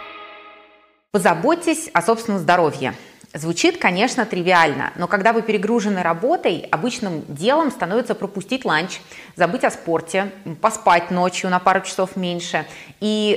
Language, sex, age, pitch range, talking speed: Russian, female, 20-39, 165-220 Hz, 120 wpm